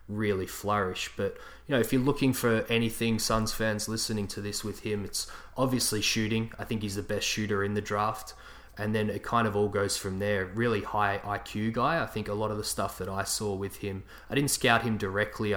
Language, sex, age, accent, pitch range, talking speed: English, male, 20-39, Australian, 100-110 Hz, 225 wpm